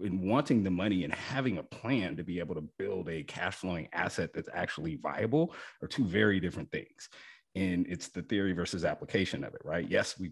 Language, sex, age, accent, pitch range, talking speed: English, male, 30-49, American, 90-110 Hz, 210 wpm